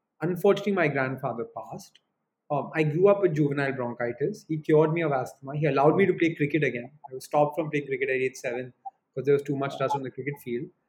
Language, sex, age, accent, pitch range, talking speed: English, male, 30-49, Indian, 130-170 Hz, 230 wpm